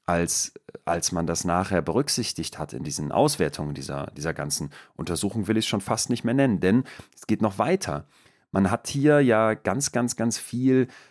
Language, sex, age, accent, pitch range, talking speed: German, male, 40-59, German, 95-120 Hz, 190 wpm